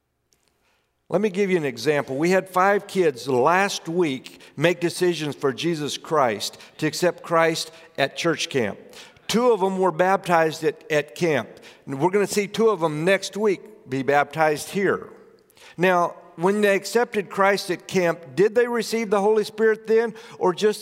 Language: English